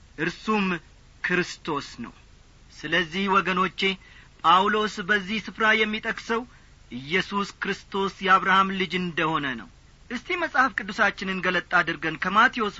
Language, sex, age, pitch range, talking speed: Amharic, male, 40-59, 180-225 Hz, 95 wpm